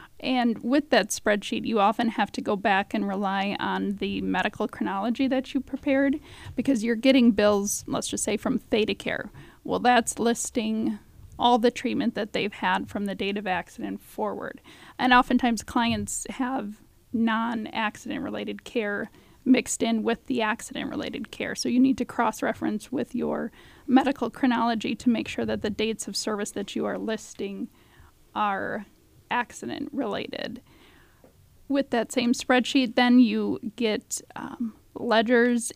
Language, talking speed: English, 150 wpm